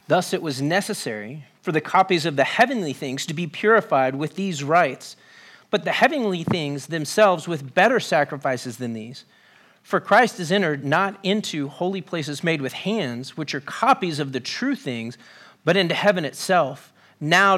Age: 40-59